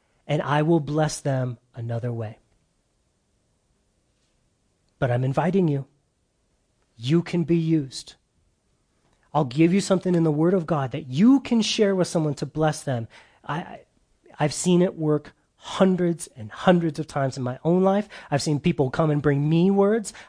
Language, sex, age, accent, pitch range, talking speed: English, male, 30-49, American, 135-170 Hz, 165 wpm